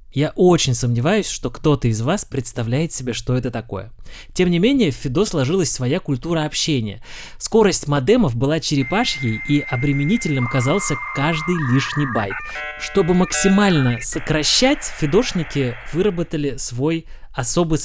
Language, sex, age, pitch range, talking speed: Russian, male, 20-39, 130-170 Hz, 130 wpm